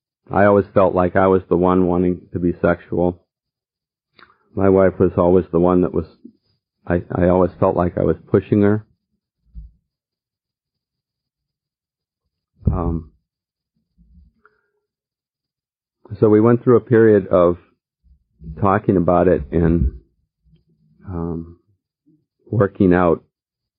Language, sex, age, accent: English, male, 50-69, American